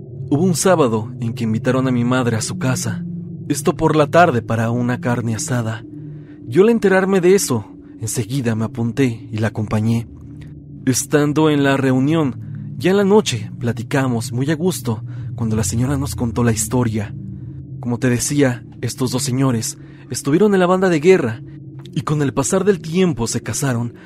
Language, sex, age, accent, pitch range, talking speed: Spanish, male, 40-59, Mexican, 120-150 Hz, 175 wpm